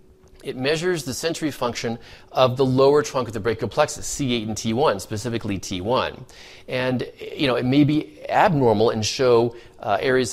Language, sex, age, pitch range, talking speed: English, male, 40-59, 105-145 Hz, 170 wpm